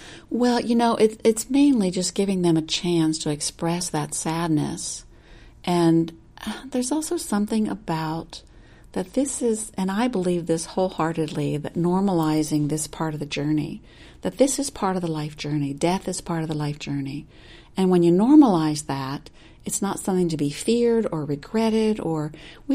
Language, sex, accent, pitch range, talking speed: English, female, American, 155-215 Hz, 170 wpm